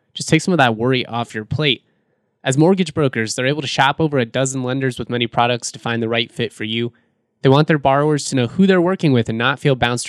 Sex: male